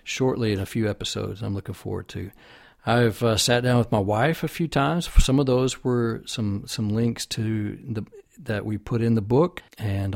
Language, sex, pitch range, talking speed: English, male, 105-120 Hz, 205 wpm